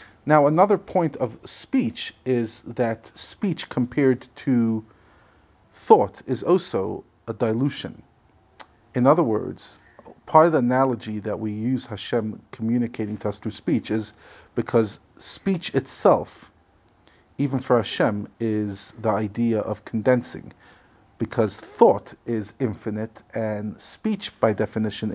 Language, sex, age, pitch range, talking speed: English, male, 40-59, 105-130 Hz, 120 wpm